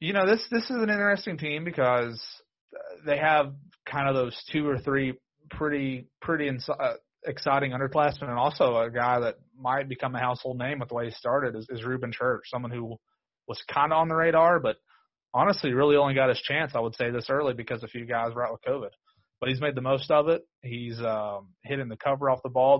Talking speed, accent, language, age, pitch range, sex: 225 wpm, American, English, 30-49, 115-145 Hz, male